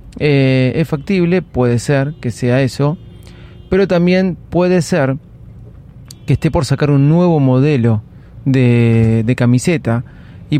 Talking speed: 130 wpm